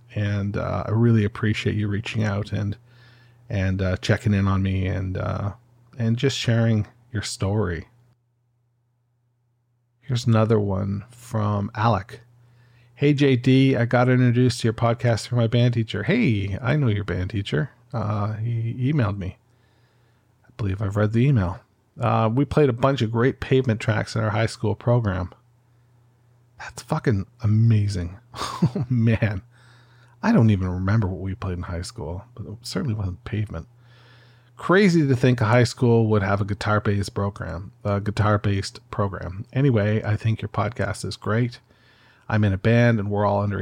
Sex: male